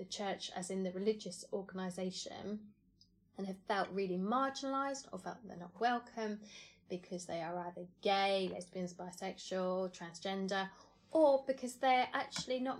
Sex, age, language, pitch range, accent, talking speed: female, 20-39, English, 185-255 Hz, British, 140 wpm